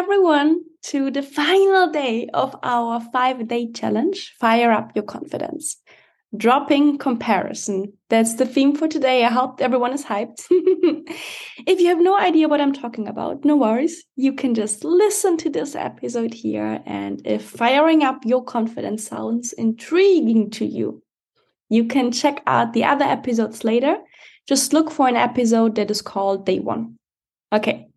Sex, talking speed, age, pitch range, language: female, 160 wpm, 20-39, 230-315 Hz, English